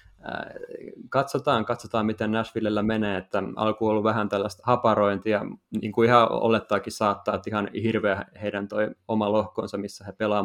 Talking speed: 150 wpm